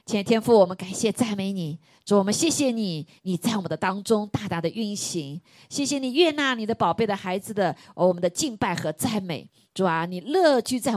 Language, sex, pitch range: Chinese, female, 170-225 Hz